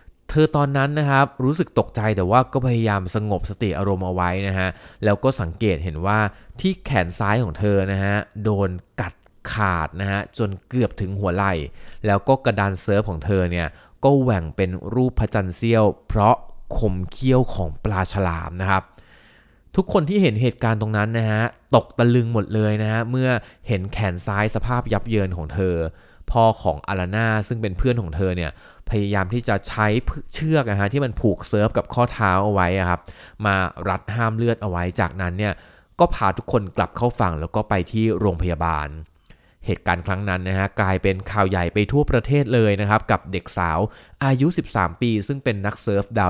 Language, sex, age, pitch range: Thai, male, 20-39, 90-115 Hz